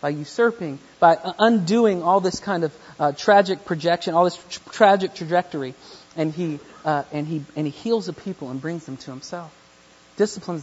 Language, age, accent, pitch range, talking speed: English, 40-59, American, 155-240 Hz, 180 wpm